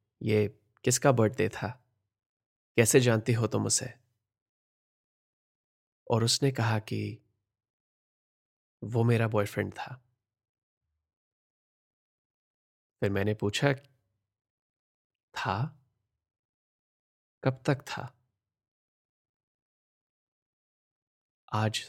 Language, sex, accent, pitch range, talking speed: Hindi, male, native, 105-120 Hz, 70 wpm